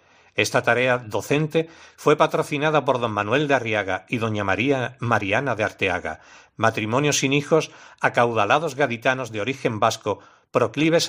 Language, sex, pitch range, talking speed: Spanish, male, 110-145 Hz, 135 wpm